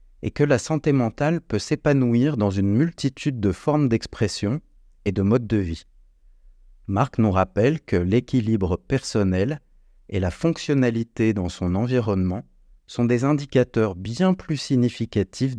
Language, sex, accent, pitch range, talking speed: French, male, French, 100-130 Hz, 140 wpm